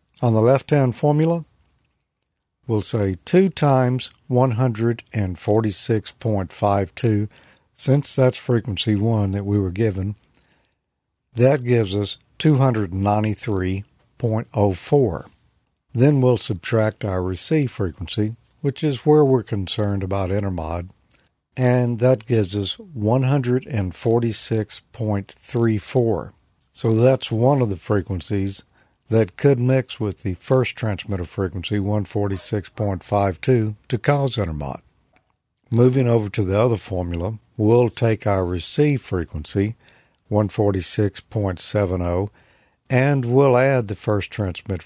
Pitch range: 95-125 Hz